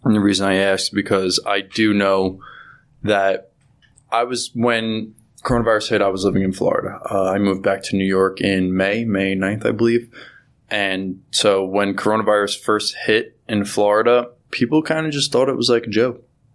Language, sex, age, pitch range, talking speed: English, male, 20-39, 95-110 Hz, 190 wpm